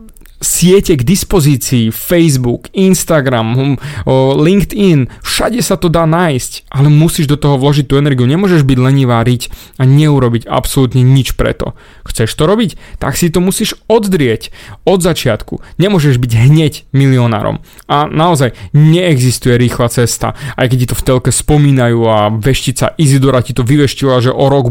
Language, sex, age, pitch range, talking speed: Slovak, male, 20-39, 125-155 Hz, 155 wpm